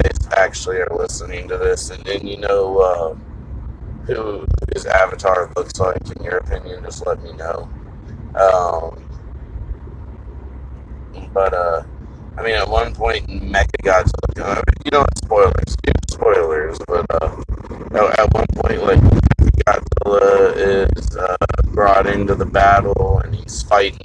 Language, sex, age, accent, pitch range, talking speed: English, male, 20-39, American, 85-125 Hz, 130 wpm